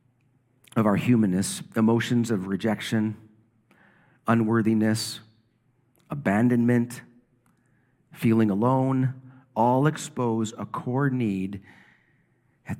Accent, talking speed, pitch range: American, 75 wpm, 115-155 Hz